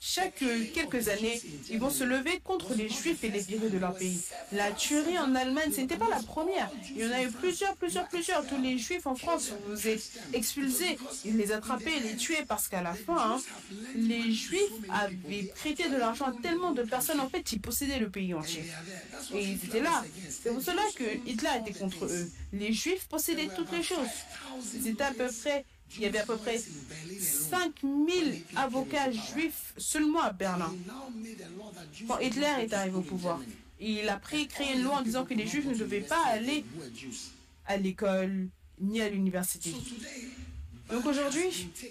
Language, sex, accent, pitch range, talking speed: French, female, French, 195-285 Hz, 185 wpm